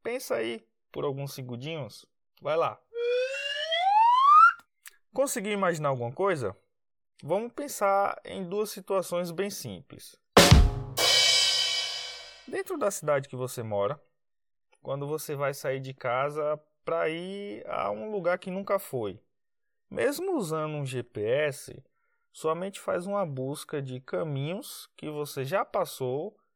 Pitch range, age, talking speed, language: 135-205 Hz, 20-39, 115 wpm, Portuguese